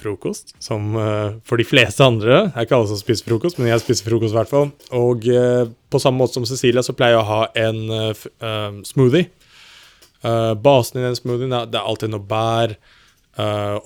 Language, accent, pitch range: Swedish, Norwegian, 105-120 Hz